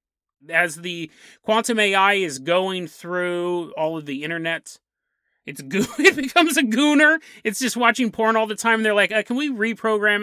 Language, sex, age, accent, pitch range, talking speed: English, male, 30-49, American, 175-245 Hz, 180 wpm